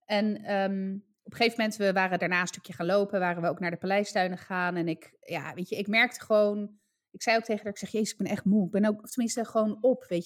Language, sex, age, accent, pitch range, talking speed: Dutch, female, 20-39, Dutch, 185-230 Hz, 285 wpm